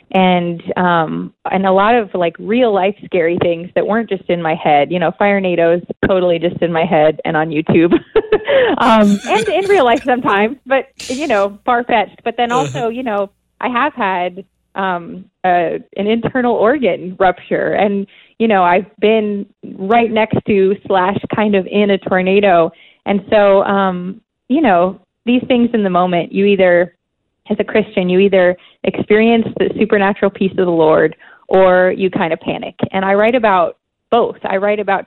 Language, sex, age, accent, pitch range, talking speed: English, female, 20-39, American, 175-215 Hz, 180 wpm